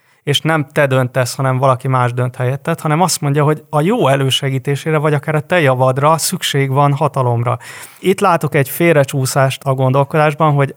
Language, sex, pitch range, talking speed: Hungarian, male, 135-155 Hz, 165 wpm